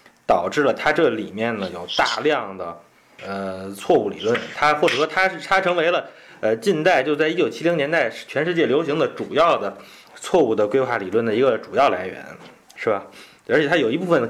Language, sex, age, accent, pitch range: Chinese, male, 30-49, native, 125-175 Hz